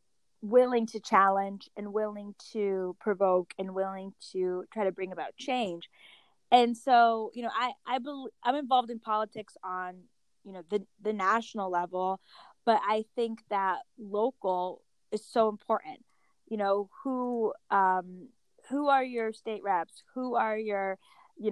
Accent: American